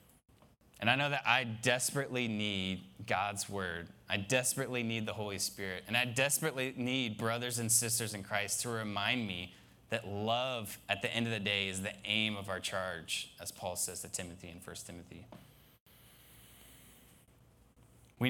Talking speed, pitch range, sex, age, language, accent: 165 wpm, 95-115 Hz, male, 20-39, English, American